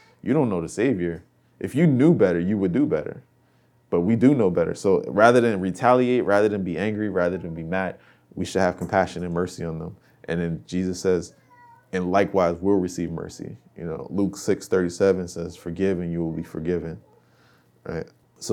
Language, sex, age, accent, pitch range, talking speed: English, male, 20-39, American, 85-100 Hz, 200 wpm